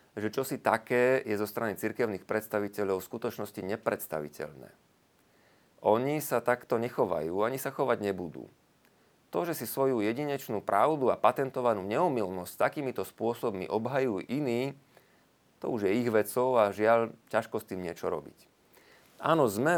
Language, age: Slovak, 30-49